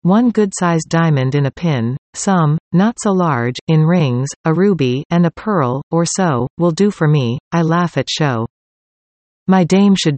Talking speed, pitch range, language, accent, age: 185 wpm, 145-185 Hz, English, American, 40-59